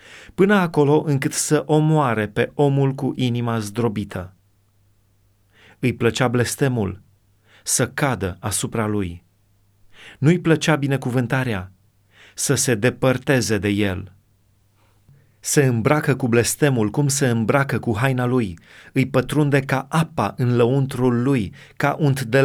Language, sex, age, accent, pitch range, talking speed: Romanian, male, 30-49, native, 105-135 Hz, 125 wpm